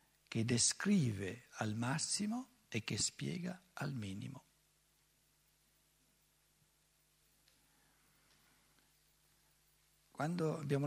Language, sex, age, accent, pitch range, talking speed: Italian, male, 60-79, native, 130-195 Hz, 60 wpm